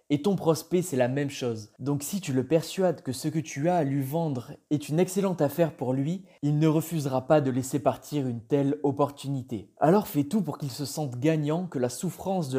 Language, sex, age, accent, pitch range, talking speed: French, male, 20-39, French, 135-175 Hz, 230 wpm